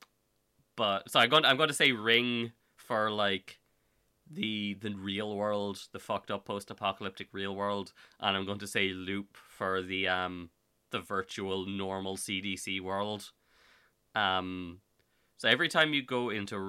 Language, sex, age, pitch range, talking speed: English, male, 20-39, 95-115 Hz, 160 wpm